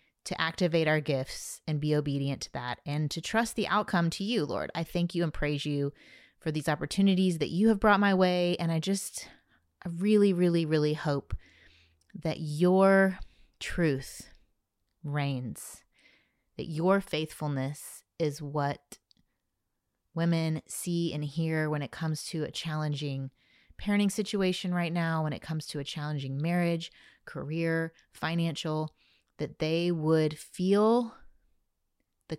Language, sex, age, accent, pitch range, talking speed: English, female, 30-49, American, 145-180 Hz, 145 wpm